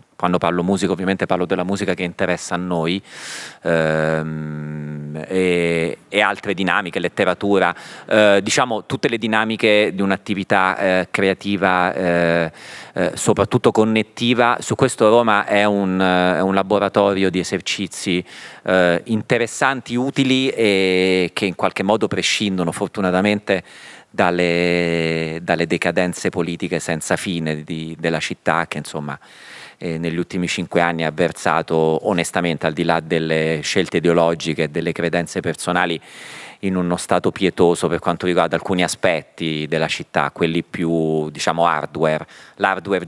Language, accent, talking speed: Italian, native, 125 wpm